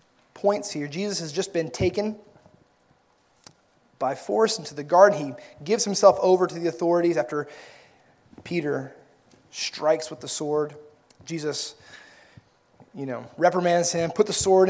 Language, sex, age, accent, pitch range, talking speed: English, male, 30-49, American, 150-210 Hz, 135 wpm